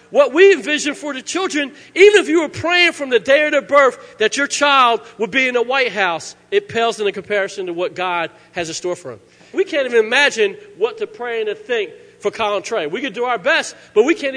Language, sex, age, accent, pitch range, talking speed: English, male, 40-59, American, 225-355 Hz, 245 wpm